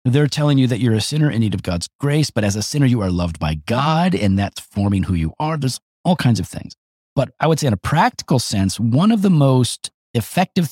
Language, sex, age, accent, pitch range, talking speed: English, male, 40-59, American, 95-150 Hz, 250 wpm